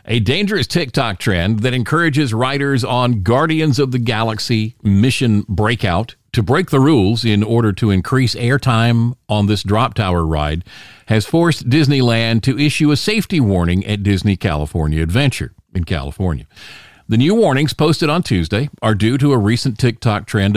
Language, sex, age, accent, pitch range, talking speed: English, male, 50-69, American, 100-135 Hz, 160 wpm